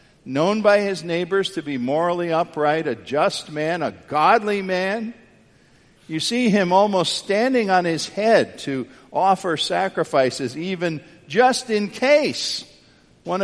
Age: 50-69